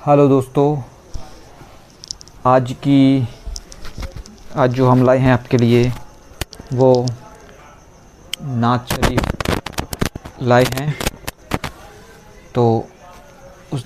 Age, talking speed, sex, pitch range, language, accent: 50-69, 80 wpm, male, 120-140 Hz, Hindi, native